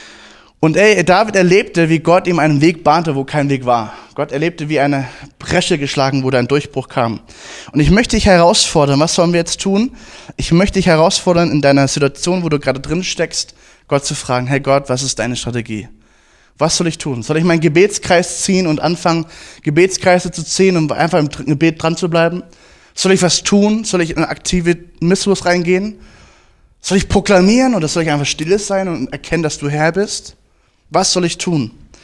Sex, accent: male, German